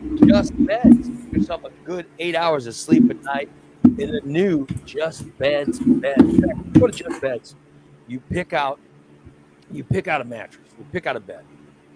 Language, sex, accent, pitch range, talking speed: English, male, American, 120-180 Hz, 175 wpm